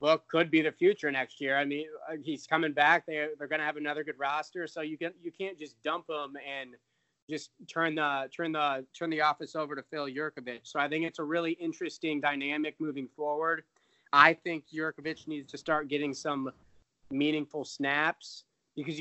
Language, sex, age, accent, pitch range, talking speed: English, male, 20-39, American, 140-165 Hz, 200 wpm